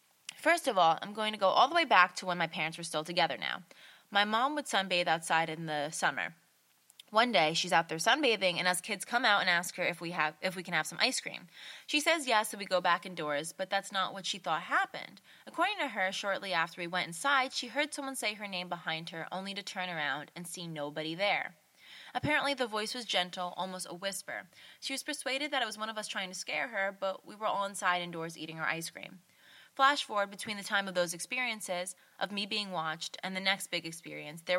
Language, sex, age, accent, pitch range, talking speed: English, female, 20-39, American, 175-230 Hz, 240 wpm